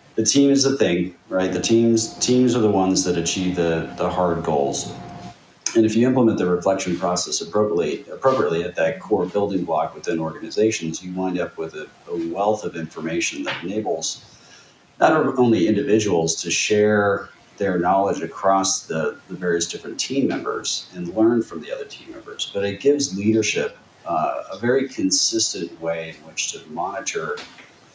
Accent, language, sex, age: American, English, male, 40-59